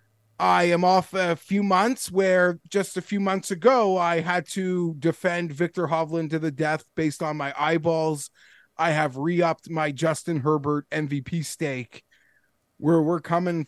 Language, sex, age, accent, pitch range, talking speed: English, male, 30-49, American, 155-200 Hz, 160 wpm